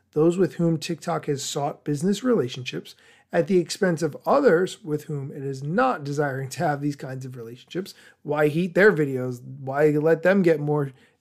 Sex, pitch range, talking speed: male, 150-195 Hz, 180 wpm